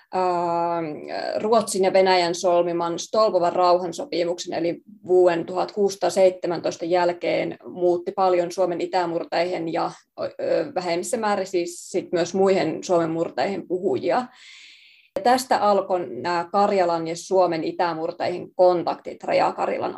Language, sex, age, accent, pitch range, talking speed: Finnish, female, 20-39, native, 175-195 Hz, 100 wpm